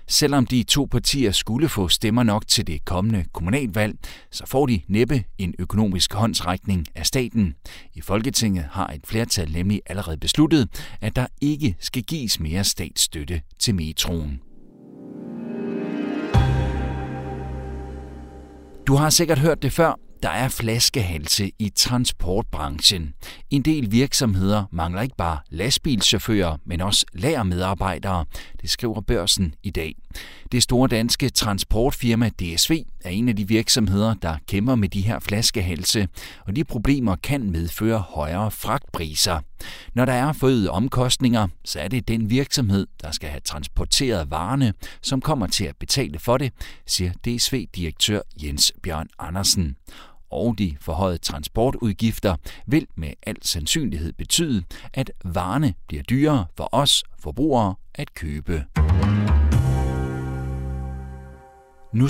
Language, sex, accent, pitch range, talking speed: Danish, male, native, 80-125 Hz, 130 wpm